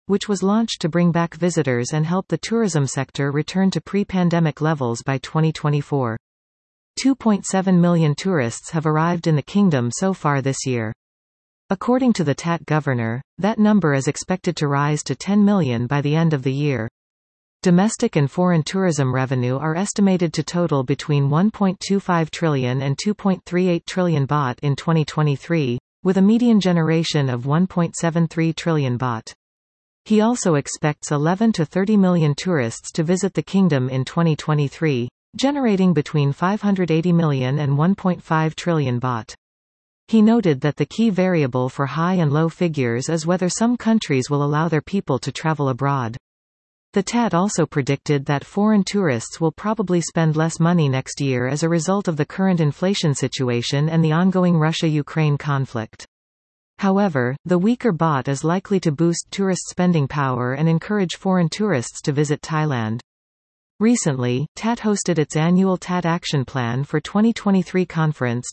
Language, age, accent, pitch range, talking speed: English, 40-59, American, 140-185 Hz, 155 wpm